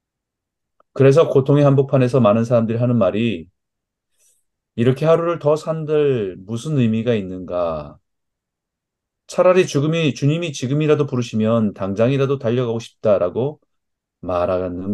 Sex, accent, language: male, native, Korean